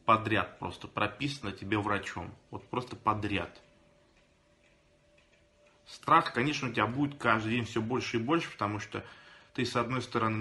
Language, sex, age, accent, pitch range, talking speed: Russian, male, 20-39, native, 105-140 Hz, 145 wpm